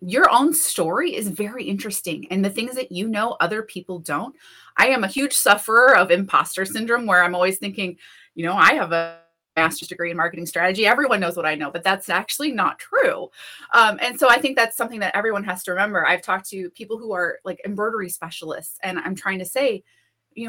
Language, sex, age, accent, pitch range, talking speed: English, female, 30-49, American, 180-270 Hz, 215 wpm